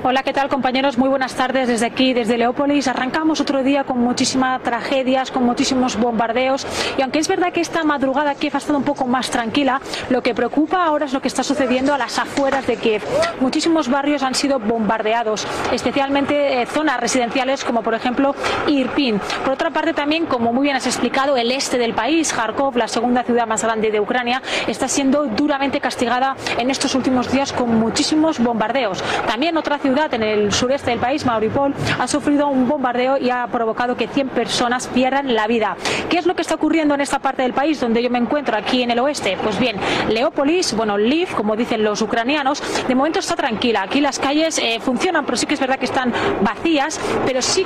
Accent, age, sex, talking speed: Spanish, 30-49, female, 205 wpm